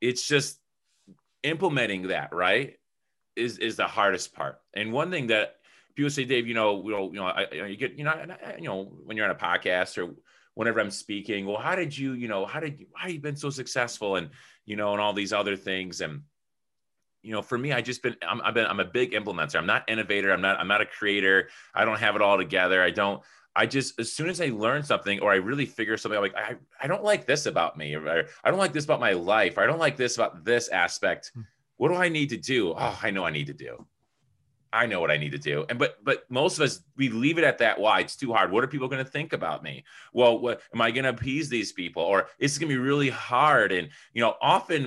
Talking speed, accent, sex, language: 260 wpm, American, male, English